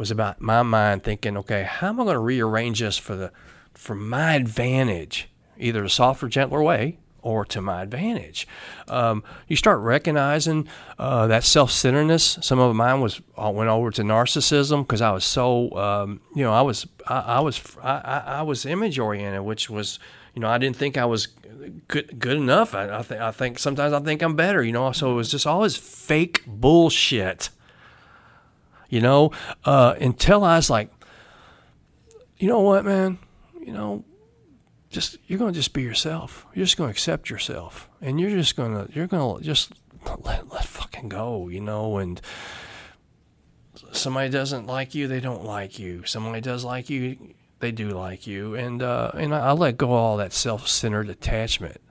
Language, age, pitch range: English, 40-59, 110-150 Hz